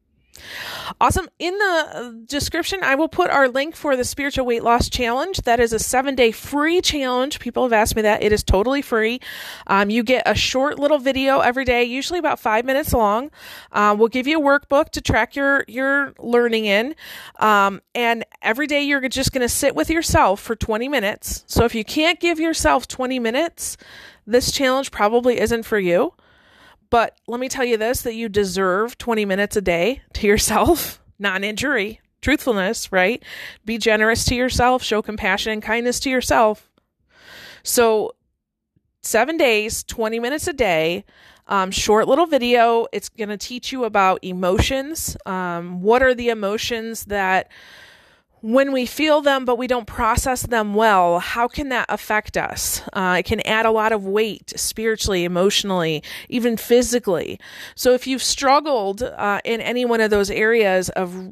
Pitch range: 210-265 Hz